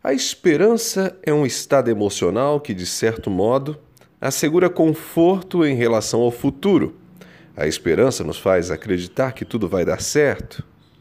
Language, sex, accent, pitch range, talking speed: Portuguese, male, Brazilian, 115-170 Hz, 140 wpm